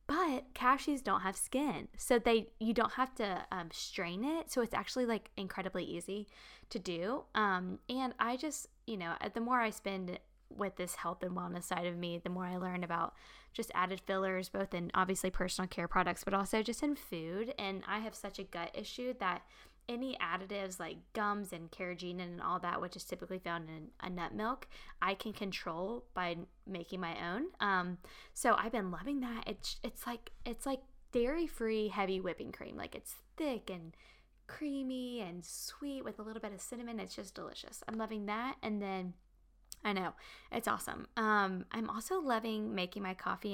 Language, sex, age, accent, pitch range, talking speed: English, female, 10-29, American, 185-240 Hz, 190 wpm